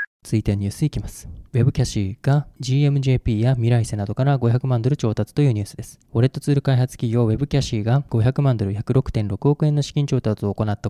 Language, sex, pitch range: Japanese, male, 110-135 Hz